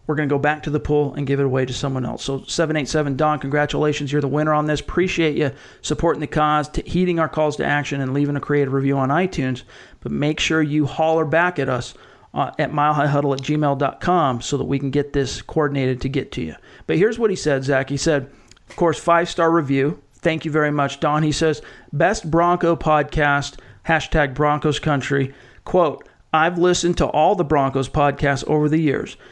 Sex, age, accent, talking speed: male, 40-59, American, 210 wpm